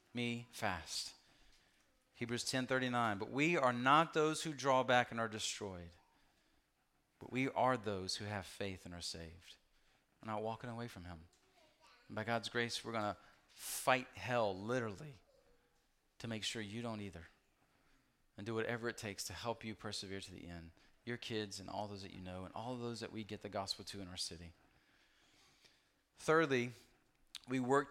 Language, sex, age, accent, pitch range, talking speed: English, male, 40-59, American, 110-140 Hz, 180 wpm